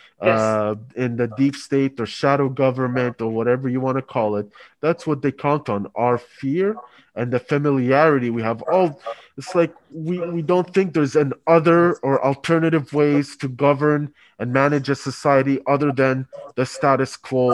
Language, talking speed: English, 180 wpm